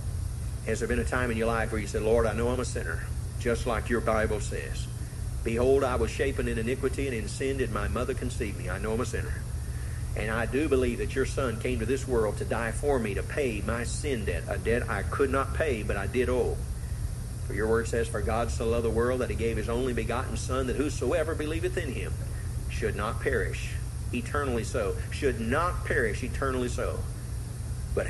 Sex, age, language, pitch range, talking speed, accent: male, 40-59, English, 105-120 Hz, 220 wpm, American